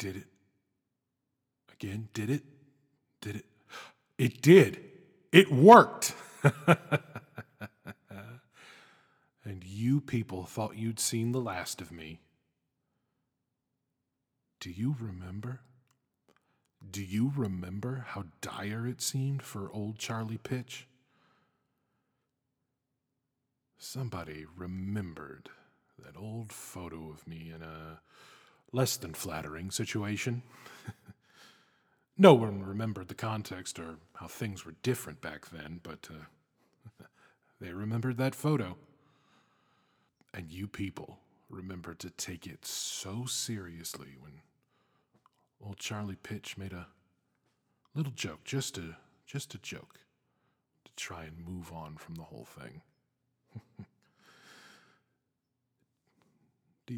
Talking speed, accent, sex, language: 100 wpm, American, male, English